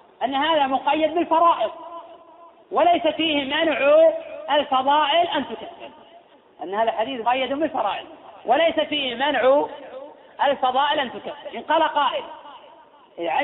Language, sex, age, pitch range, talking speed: Arabic, female, 30-49, 245-315 Hz, 110 wpm